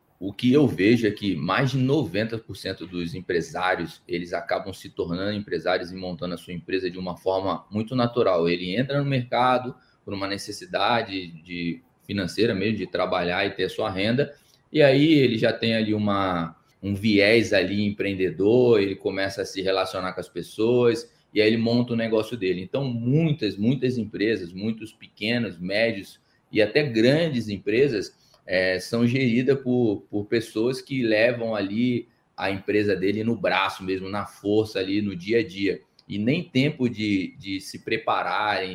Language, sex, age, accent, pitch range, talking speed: Portuguese, male, 20-39, Brazilian, 95-120 Hz, 170 wpm